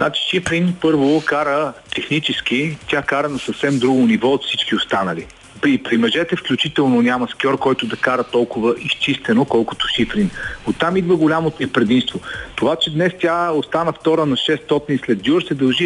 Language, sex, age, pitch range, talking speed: Bulgarian, male, 40-59, 130-175 Hz, 165 wpm